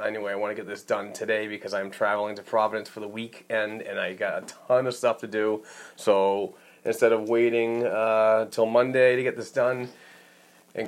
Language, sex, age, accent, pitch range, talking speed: English, male, 30-49, American, 100-115 Hz, 205 wpm